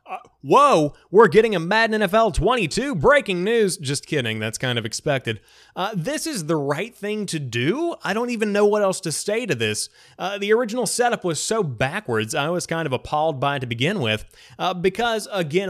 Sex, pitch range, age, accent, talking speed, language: male, 135-190 Hz, 30-49, American, 205 wpm, English